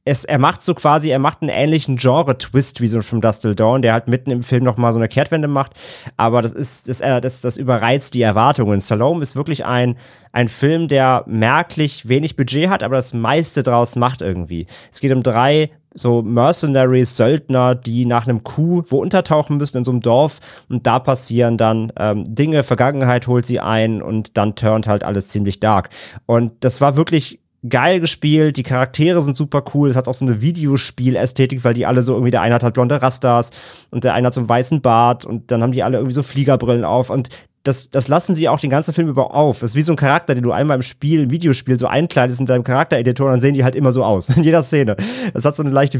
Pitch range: 120-140 Hz